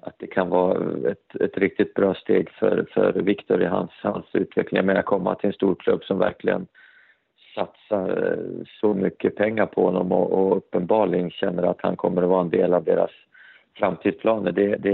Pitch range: 95-110 Hz